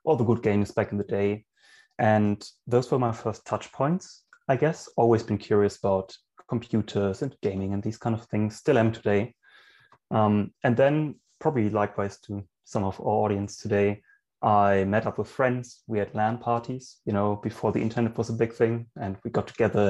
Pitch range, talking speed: 105-120 Hz, 195 wpm